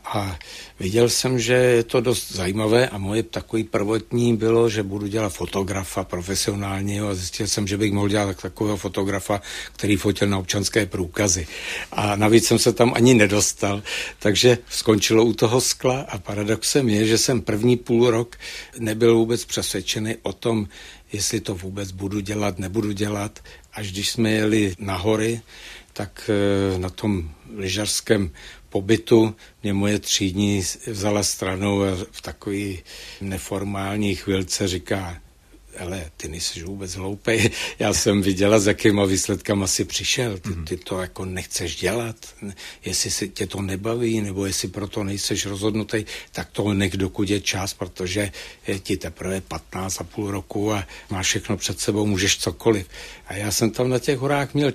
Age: 60-79